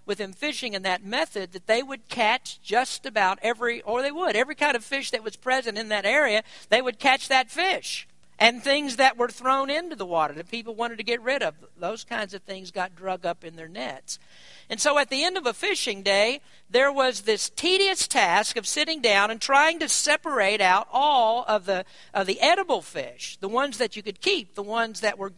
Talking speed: 220 wpm